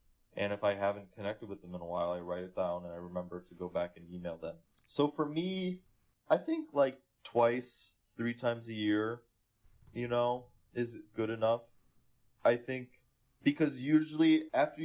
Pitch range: 100-125 Hz